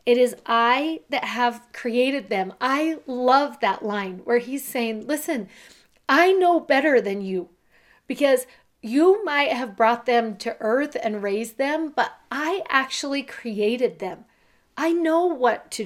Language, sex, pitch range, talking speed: English, female, 210-260 Hz, 150 wpm